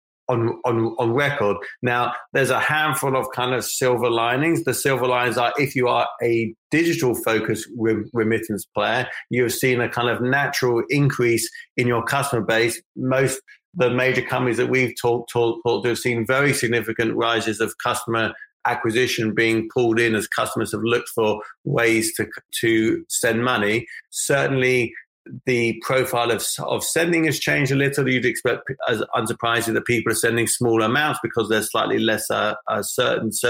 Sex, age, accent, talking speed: male, 40-59, British, 170 wpm